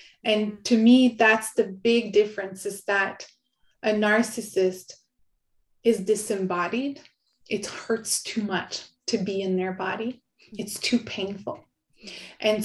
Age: 30-49